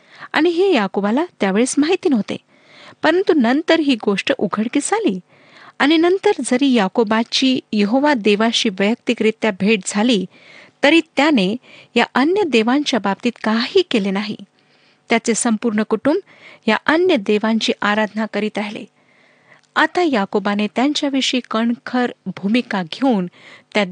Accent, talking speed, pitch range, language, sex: native, 115 wpm, 210-270 Hz, Marathi, female